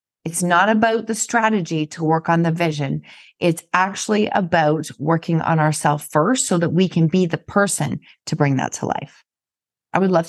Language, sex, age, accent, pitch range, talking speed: English, female, 30-49, American, 155-200 Hz, 185 wpm